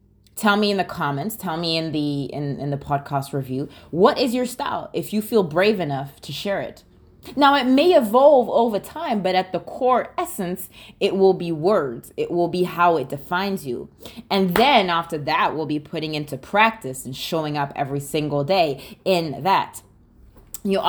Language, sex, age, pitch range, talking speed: English, female, 20-39, 155-225 Hz, 190 wpm